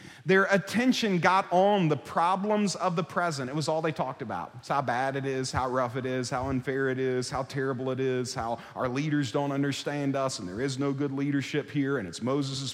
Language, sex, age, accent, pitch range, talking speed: English, male, 40-59, American, 130-175 Hz, 225 wpm